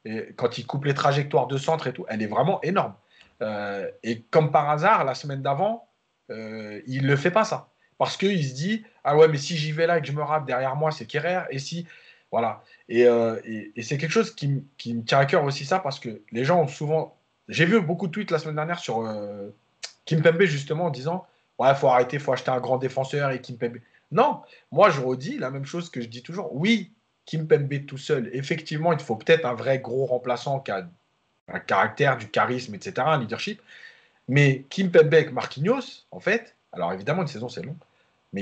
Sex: male